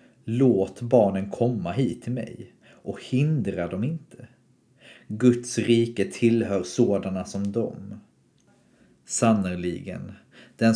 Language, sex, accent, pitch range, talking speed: Swedish, male, native, 100-120 Hz, 100 wpm